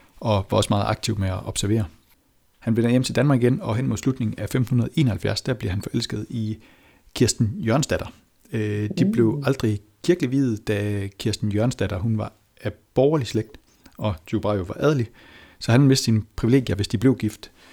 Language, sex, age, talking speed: Danish, male, 60-79, 185 wpm